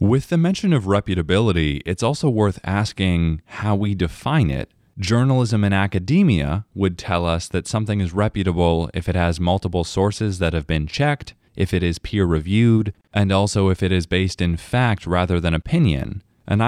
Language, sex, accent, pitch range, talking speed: English, male, American, 85-115 Hz, 175 wpm